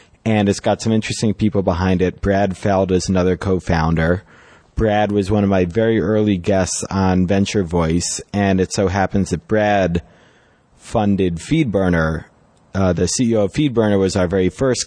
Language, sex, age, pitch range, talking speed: English, male, 20-39, 90-110 Hz, 165 wpm